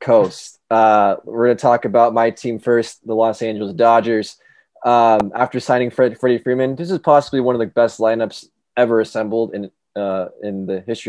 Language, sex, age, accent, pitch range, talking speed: English, male, 20-39, American, 105-120 Hz, 190 wpm